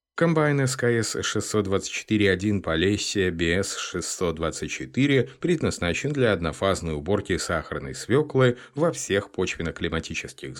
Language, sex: Russian, male